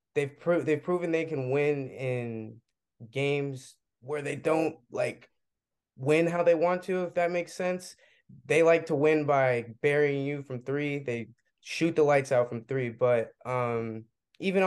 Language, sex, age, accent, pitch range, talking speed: English, male, 20-39, American, 120-145 Hz, 170 wpm